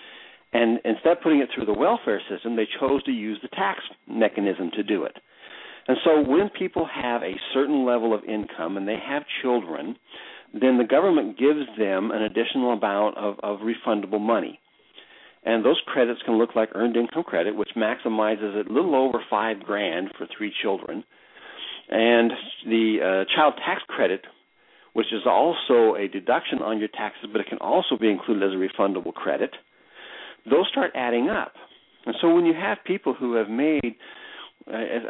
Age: 60-79